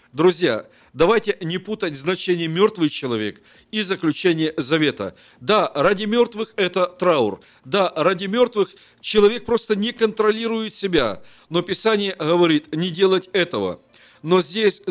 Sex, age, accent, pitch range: male, 50-69, native, 155-205 Hz